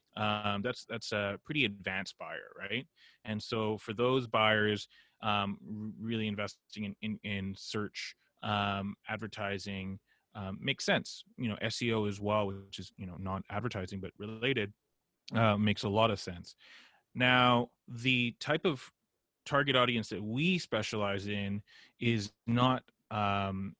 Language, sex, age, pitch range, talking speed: English, male, 30-49, 100-120 Hz, 145 wpm